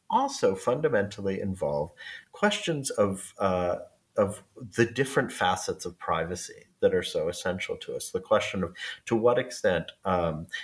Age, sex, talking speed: 40-59, male, 140 wpm